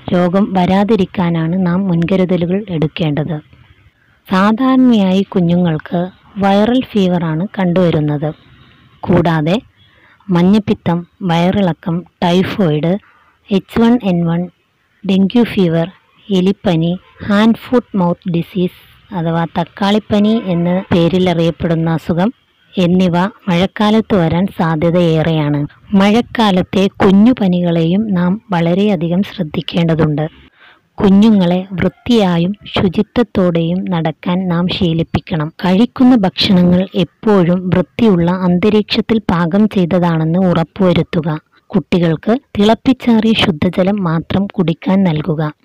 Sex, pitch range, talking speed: female, 170-200 Hz, 80 wpm